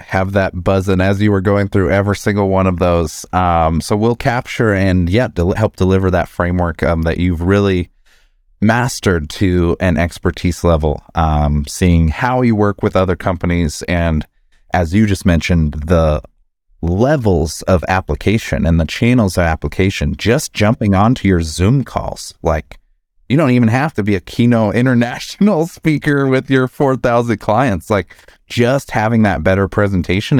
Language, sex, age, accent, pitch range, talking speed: English, male, 30-49, American, 85-115 Hz, 160 wpm